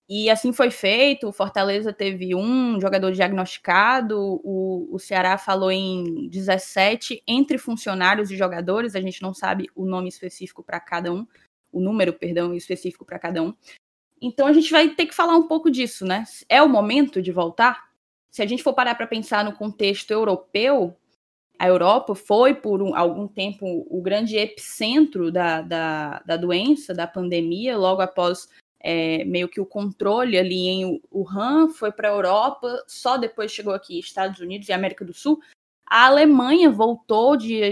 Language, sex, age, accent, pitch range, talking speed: Portuguese, female, 10-29, Brazilian, 185-240 Hz, 165 wpm